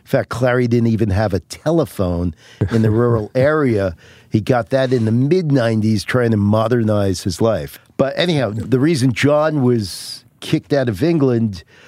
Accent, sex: American, male